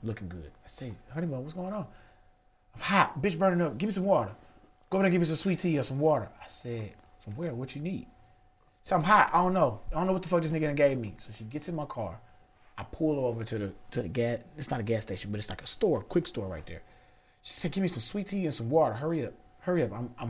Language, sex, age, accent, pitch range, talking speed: English, male, 30-49, American, 100-140 Hz, 285 wpm